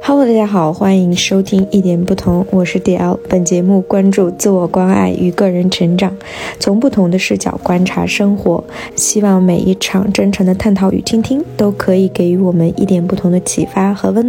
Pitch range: 180-205 Hz